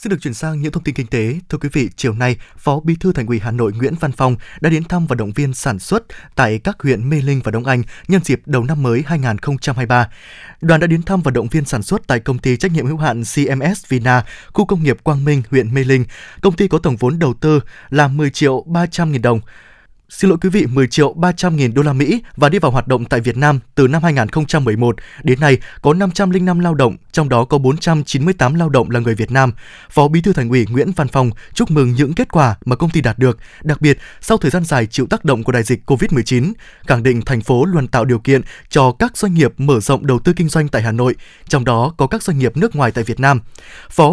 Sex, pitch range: male, 125-165 Hz